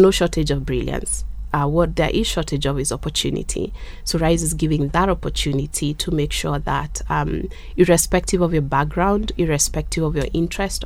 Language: English